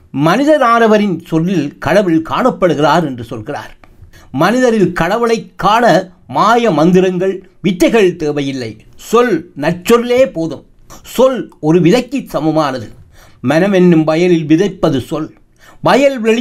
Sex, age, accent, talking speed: male, 60-79, native, 95 wpm